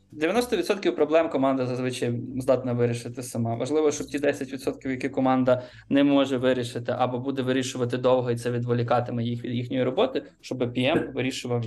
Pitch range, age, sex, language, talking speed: 125-145 Hz, 20-39, male, Russian, 155 wpm